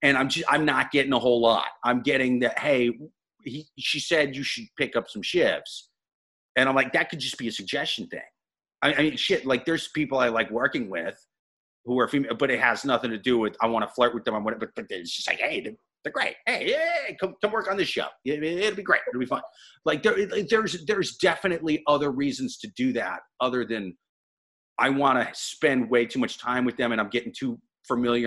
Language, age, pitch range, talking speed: English, 30-49, 120-165 Hz, 235 wpm